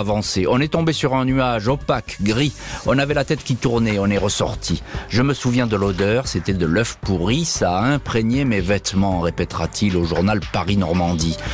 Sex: male